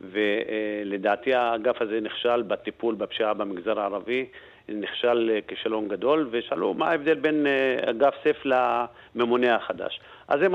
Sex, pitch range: male, 115-140 Hz